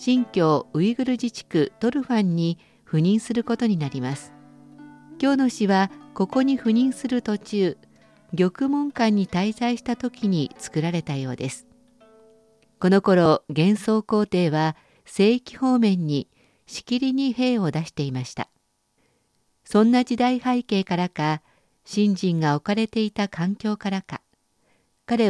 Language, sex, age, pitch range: Japanese, female, 50-69, 155-235 Hz